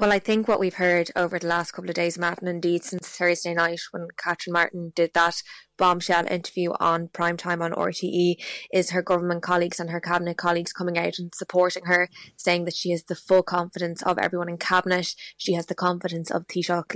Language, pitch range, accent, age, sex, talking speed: English, 175-185 Hz, Irish, 20-39, female, 210 wpm